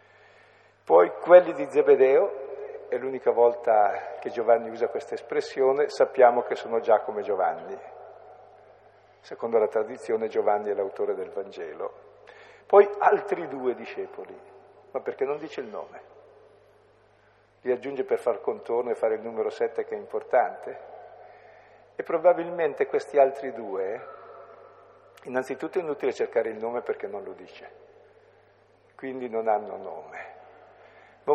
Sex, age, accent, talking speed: male, 50-69, native, 130 wpm